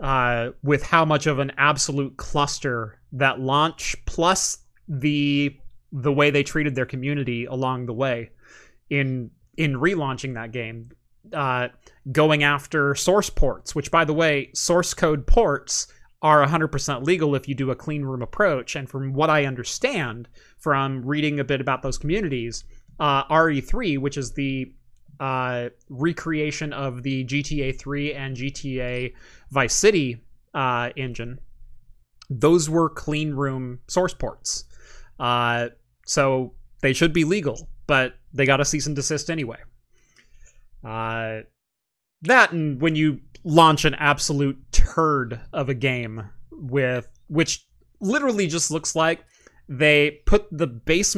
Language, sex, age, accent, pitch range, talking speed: English, male, 30-49, American, 125-155 Hz, 140 wpm